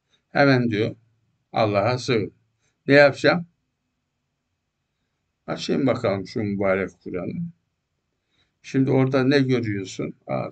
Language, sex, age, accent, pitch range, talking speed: Turkish, male, 60-79, native, 100-125 Hz, 90 wpm